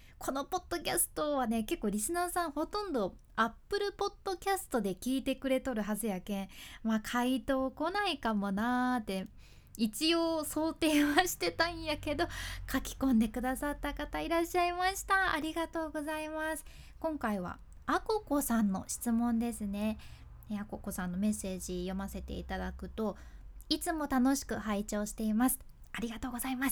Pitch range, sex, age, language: 215-315 Hz, female, 20-39, Japanese